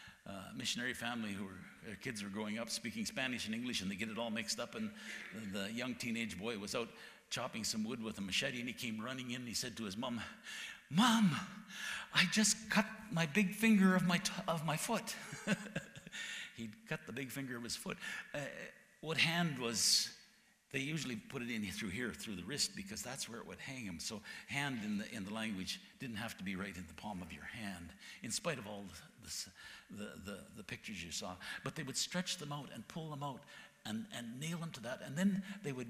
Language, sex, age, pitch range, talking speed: English, male, 60-79, 115-180 Hz, 225 wpm